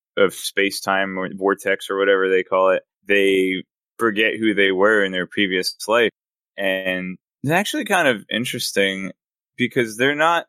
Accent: American